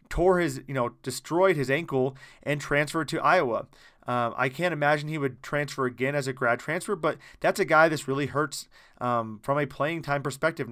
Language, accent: English, American